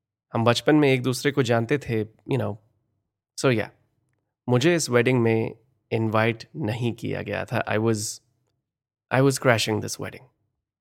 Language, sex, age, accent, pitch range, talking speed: Hindi, male, 20-39, native, 105-120 Hz, 155 wpm